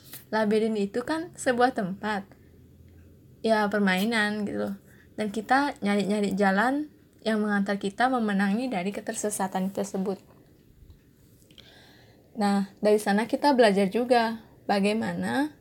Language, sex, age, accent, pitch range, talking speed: Indonesian, female, 20-39, native, 205-245 Hz, 105 wpm